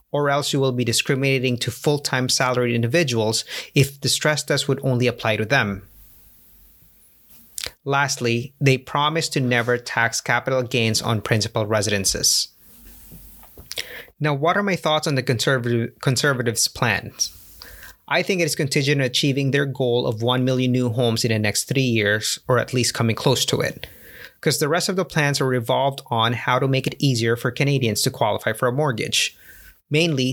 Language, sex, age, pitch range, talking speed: English, male, 30-49, 115-145 Hz, 170 wpm